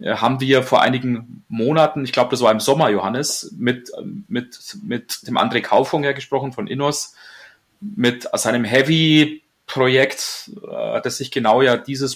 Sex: male